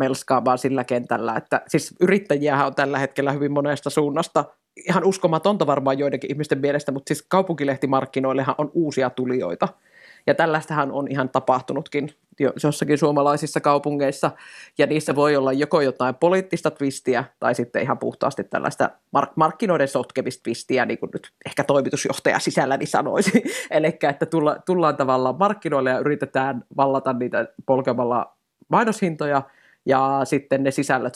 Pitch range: 135-155 Hz